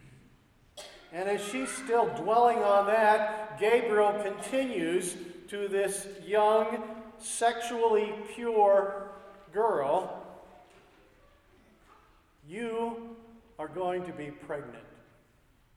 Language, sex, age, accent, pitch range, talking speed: English, male, 50-69, American, 190-225 Hz, 80 wpm